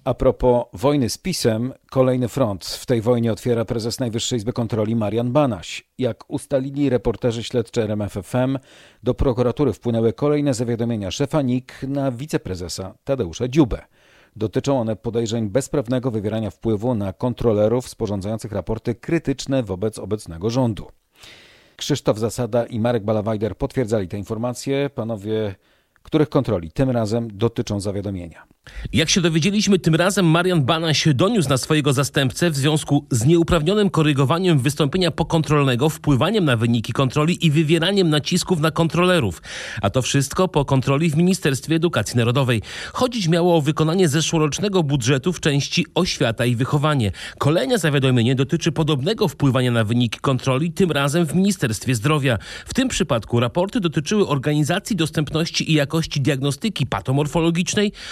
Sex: male